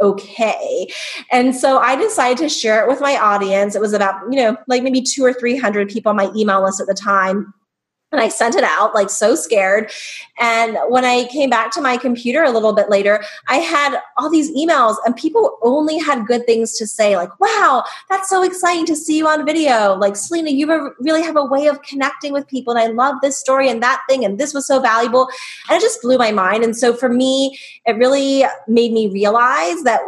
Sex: female